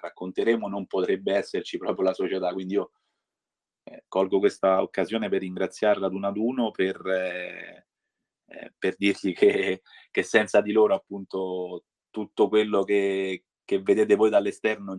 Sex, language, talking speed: male, Italian, 150 wpm